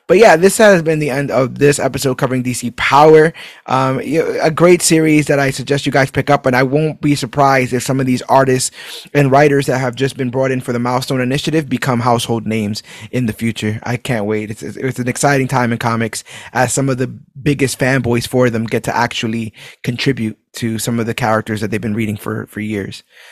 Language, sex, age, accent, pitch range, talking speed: English, male, 20-39, American, 120-145 Hz, 220 wpm